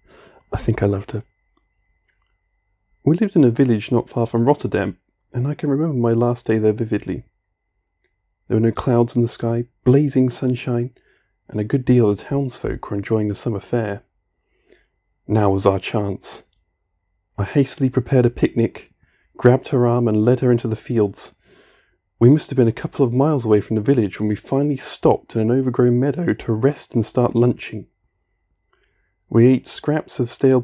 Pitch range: 105-135 Hz